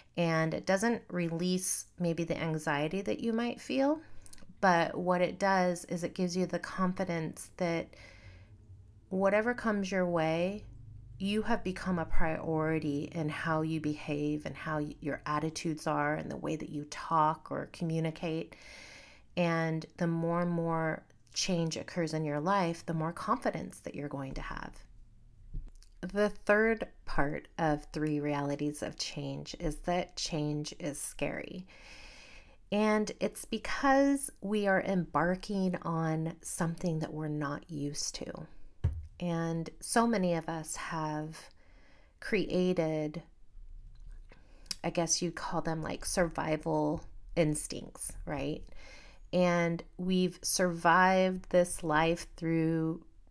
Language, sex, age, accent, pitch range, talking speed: English, female, 30-49, American, 150-180 Hz, 130 wpm